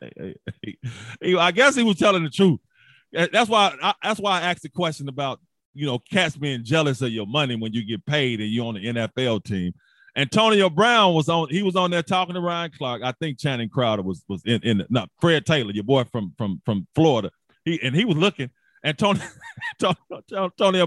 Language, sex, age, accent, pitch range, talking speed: English, male, 30-49, American, 155-245 Hz, 205 wpm